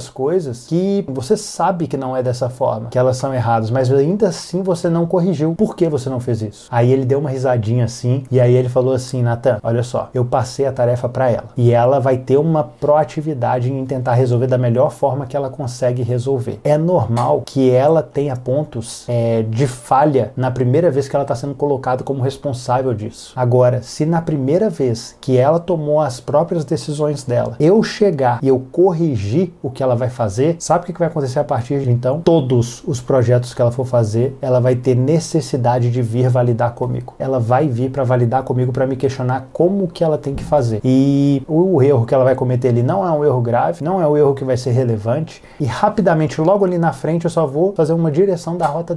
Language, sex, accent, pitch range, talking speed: Portuguese, male, Brazilian, 125-160 Hz, 220 wpm